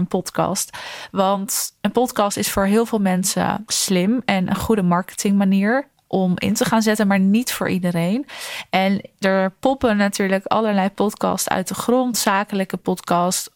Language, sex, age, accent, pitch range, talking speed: Dutch, female, 20-39, Dutch, 190-215 Hz, 160 wpm